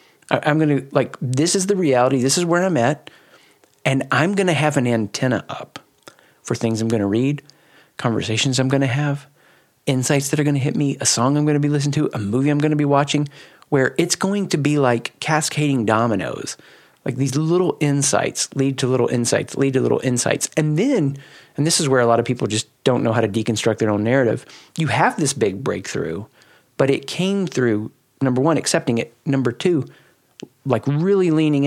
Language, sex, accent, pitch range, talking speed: English, male, American, 125-150 Hz, 210 wpm